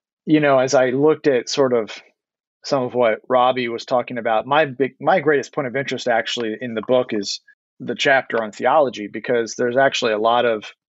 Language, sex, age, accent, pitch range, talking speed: English, male, 30-49, American, 110-130 Hz, 205 wpm